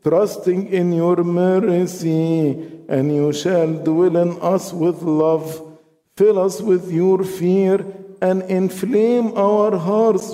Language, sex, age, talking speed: English, male, 50-69, 120 wpm